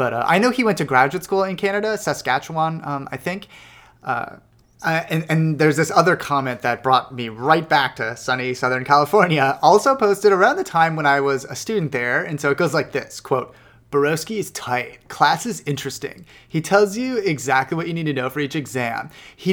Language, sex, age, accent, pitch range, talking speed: English, male, 30-49, American, 135-185 Hz, 210 wpm